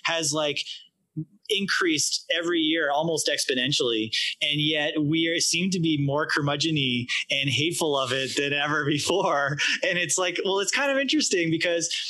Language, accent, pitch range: English, American, 135-160 Hz